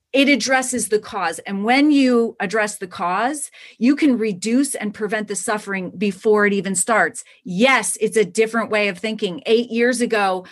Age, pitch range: 30-49, 185-240 Hz